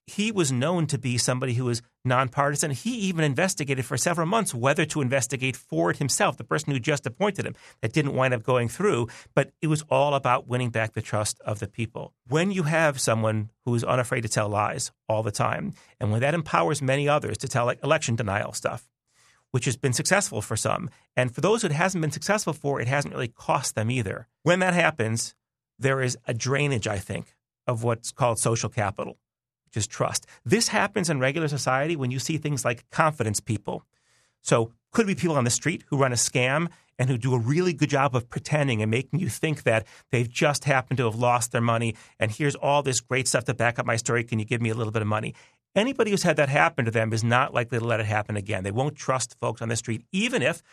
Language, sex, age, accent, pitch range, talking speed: English, male, 40-59, American, 115-150 Hz, 230 wpm